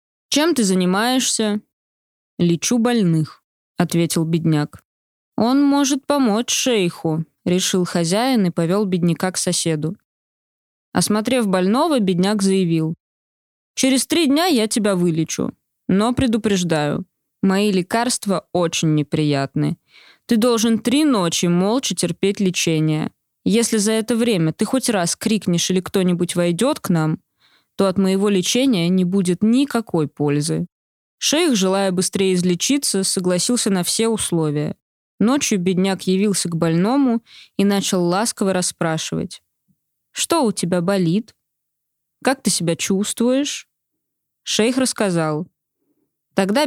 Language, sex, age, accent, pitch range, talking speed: Russian, female, 20-39, native, 170-230 Hz, 115 wpm